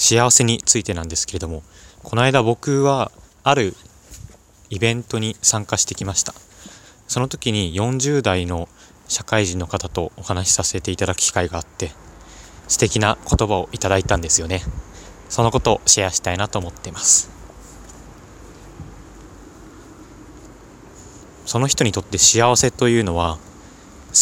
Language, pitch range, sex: Japanese, 90-110 Hz, male